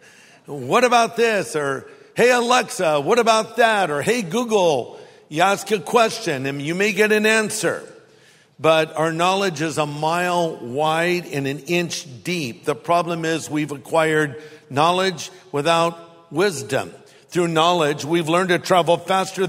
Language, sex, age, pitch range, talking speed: English, male, 50-69, 145-190 Hz, 150 wpm